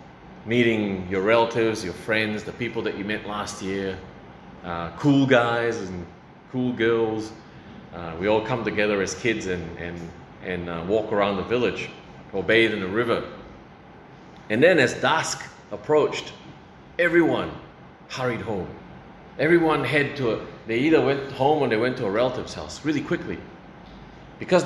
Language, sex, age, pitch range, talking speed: English, male, 30-49, 95-130 Hz, 155 wpm